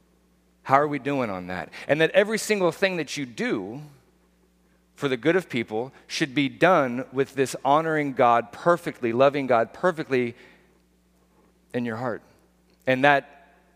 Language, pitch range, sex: English, 115-155 Hz, male